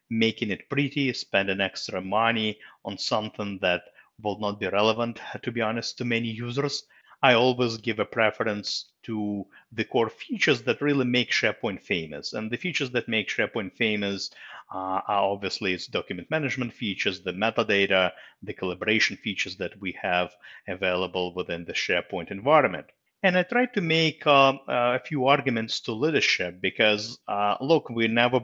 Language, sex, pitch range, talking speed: English, male, 100-135 Hz, 160 wpm